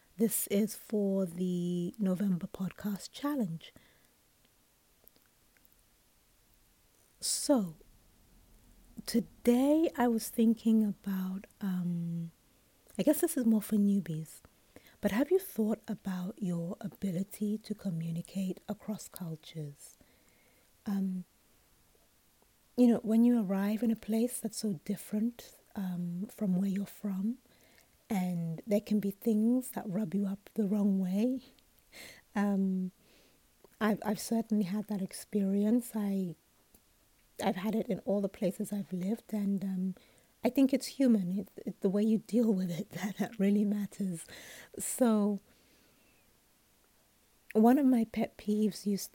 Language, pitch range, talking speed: English, 190-225 Hz, 125 wpm